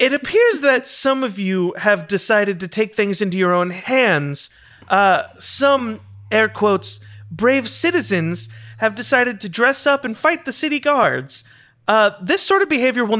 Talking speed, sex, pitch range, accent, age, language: 170 wpm, male, 180-260 Hz, American, 30-49, English